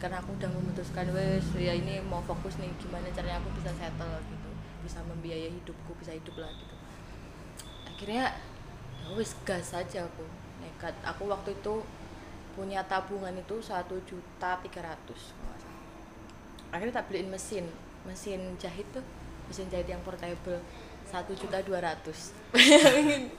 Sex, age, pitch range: female, 20-39, 180-225 Hz